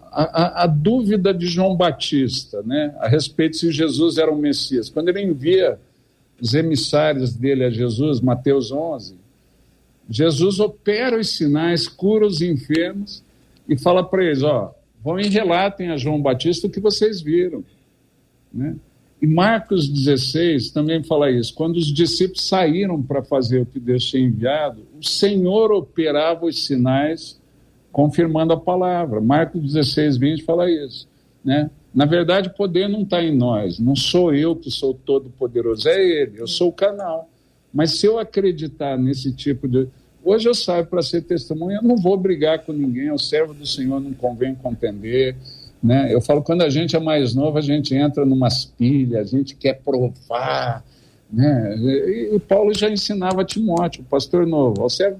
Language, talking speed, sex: Portuguese, 170 wpm, male